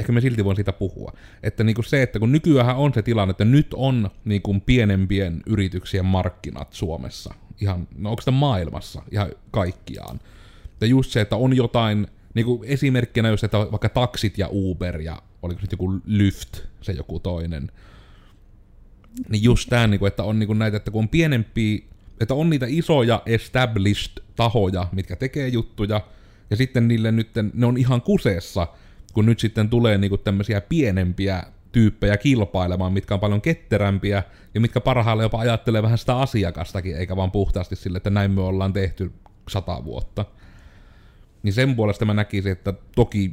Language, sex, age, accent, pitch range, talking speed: Finnish, male, 30-49, native, 95-115 Hz, 165 wpm